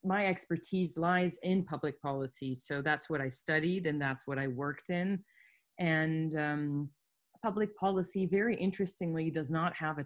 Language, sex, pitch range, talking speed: English, female, 145-190 Hz, 160 wpm